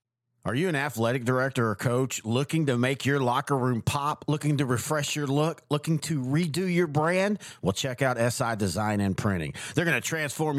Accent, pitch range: American, 120-155 Hz